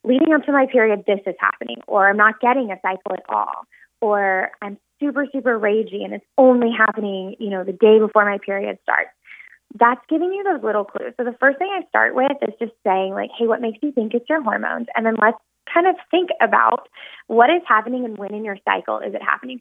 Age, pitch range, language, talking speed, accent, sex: 20-39, 205-250 Hz, English, 235 wpm, American, female